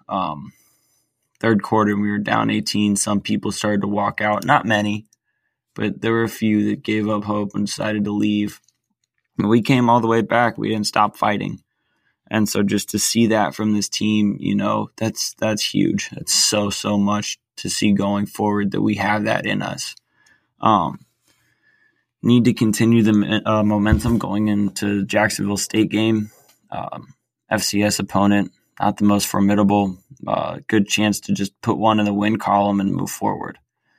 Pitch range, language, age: 100-110 Hz, English, 20-39